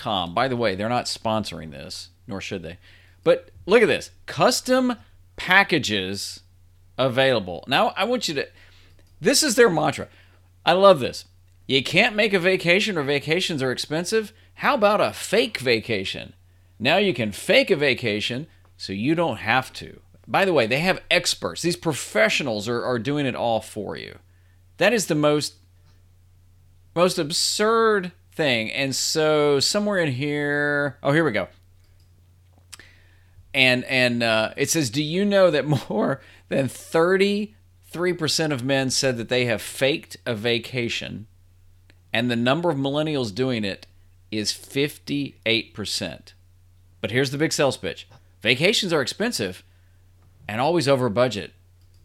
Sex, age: male, 40-59